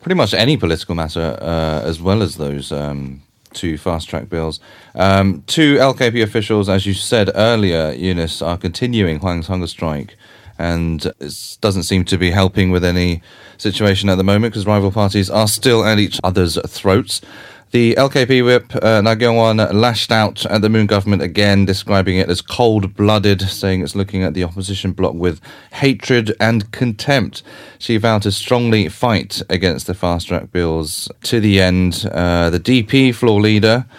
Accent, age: British, 30-49